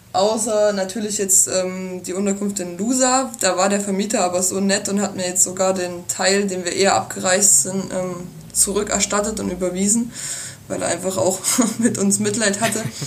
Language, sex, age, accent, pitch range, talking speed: German, female, 20-39, German, 190-240 Hz, 180 wpm